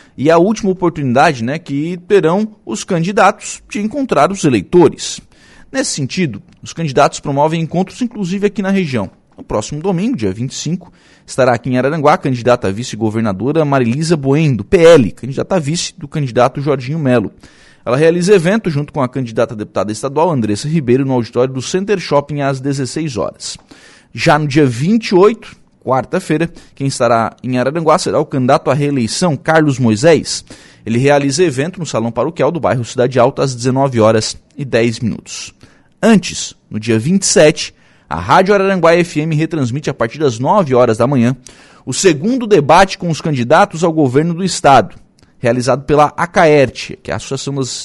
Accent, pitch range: Brazilian, 125-175 Hz